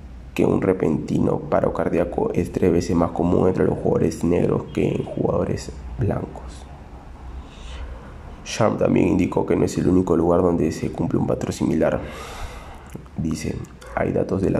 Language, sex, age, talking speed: Spanish, male, 20-39, 155 wpm